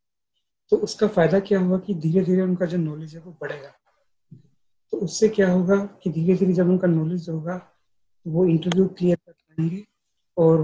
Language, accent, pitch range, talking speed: English, Indian, 160-190 Hz, 165 wpm